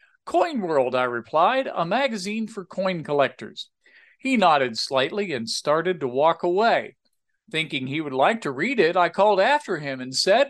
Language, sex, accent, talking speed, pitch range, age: English, male, American, 170 wpm, 155-215 Hz, 50-69